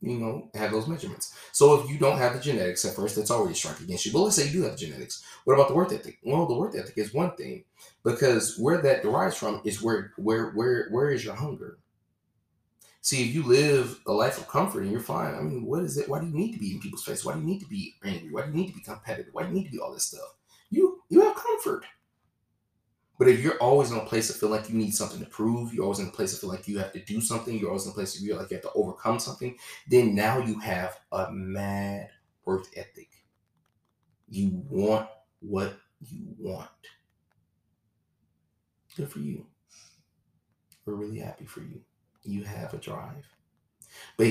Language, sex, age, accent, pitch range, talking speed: English, male, 20-39, American, 105-160 Hz, 230 wpm